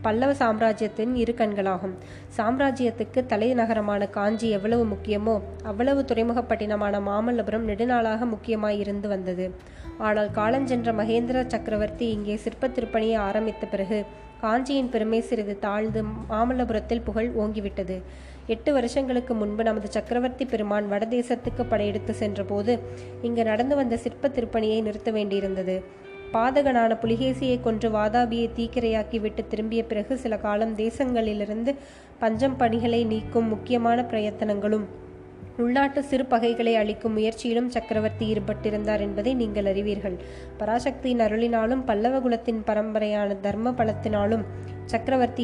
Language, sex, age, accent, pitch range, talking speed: Tamil, female, 20-39, native, 210-235 Hz, 105 wpm